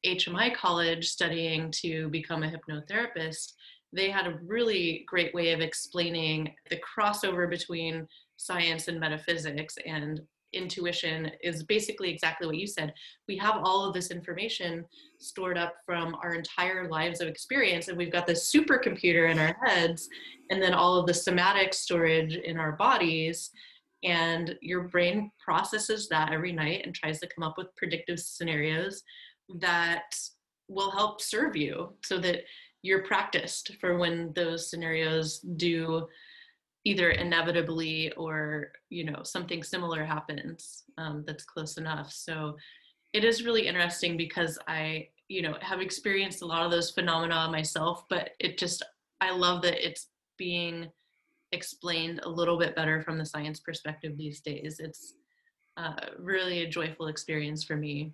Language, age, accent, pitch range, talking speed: English, 20-39, American, 160-185 Hz, 150 wpm